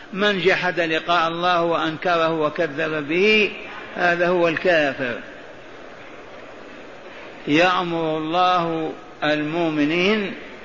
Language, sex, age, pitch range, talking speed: Arabic, male, 60-79, 160-190 Hz, 75 wpm